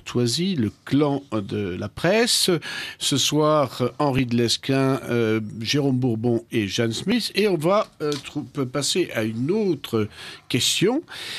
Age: 50-69